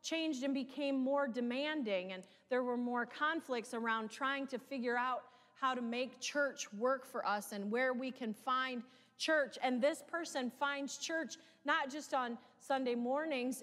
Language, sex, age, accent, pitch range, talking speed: English, female, 30-49, American, 195-260 Hz, 165 wpm